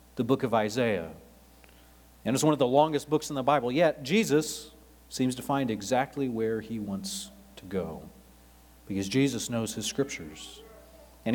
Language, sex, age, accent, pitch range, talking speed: English, male, 40-59, American, 105-150 Hz, 165 wpm